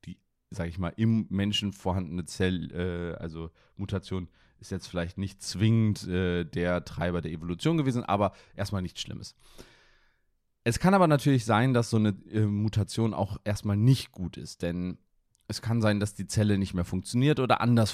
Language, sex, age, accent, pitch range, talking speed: German, male, 30-49, German, 90-115 Hz, 175 wpm